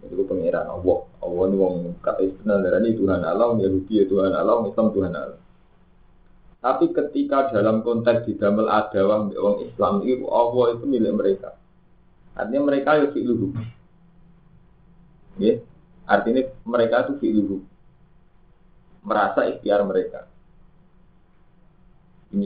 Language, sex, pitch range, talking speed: Indonesian, male, 95-130 Hz, 125 wpm